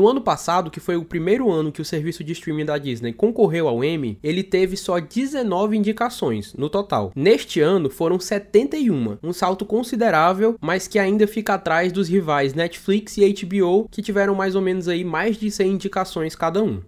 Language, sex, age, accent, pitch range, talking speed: Portuguese, male, 20-39, Brazilian, 165-210 Hz, 190 wpm